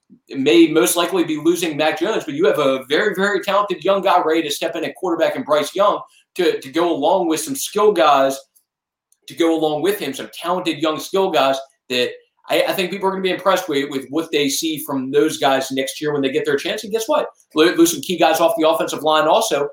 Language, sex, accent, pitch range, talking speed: English, male, American, 135-180 Hz, 245 wpm